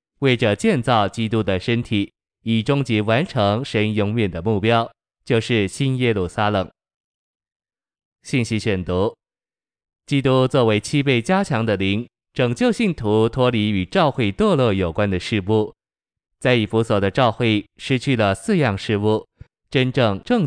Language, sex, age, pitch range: Chinese, male, 20-39, 105-125 Hz